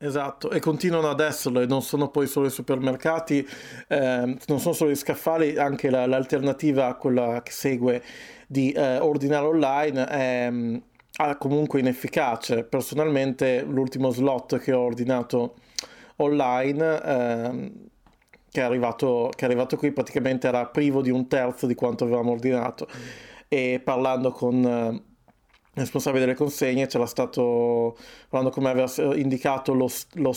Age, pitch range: 30-49, 125-145 Hz